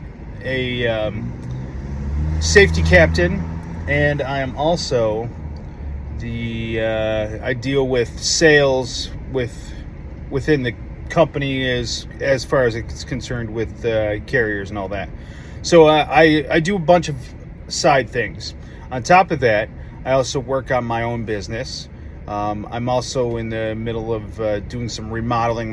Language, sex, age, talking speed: English, male, 30-49, 145 wpm